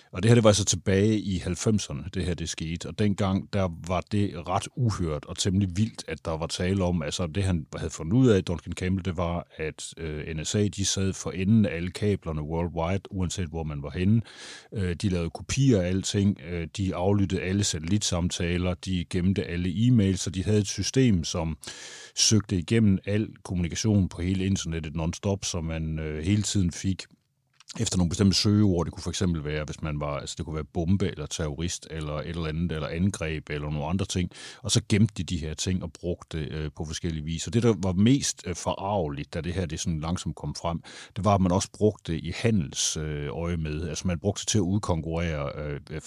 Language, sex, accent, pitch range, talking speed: Danish, male, native, 80-100 Hz, 210 wpm